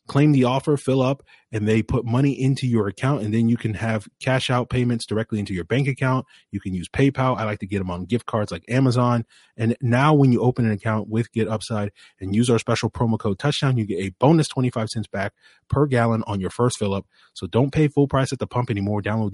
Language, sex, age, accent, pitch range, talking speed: English, male, 30-49, American, 105-130 Hz, 250 wpm